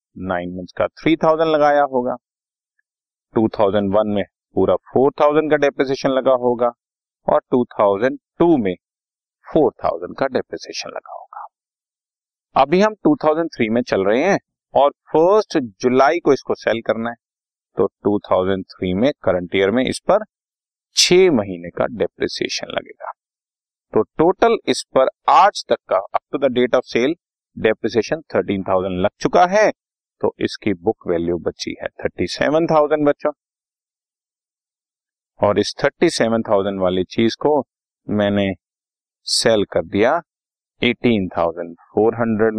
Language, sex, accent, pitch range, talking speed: Hindi, male, native, 100-150 Hz, 125 wpm